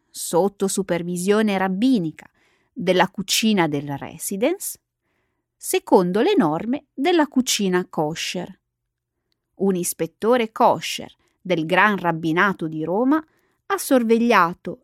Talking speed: 95 wpm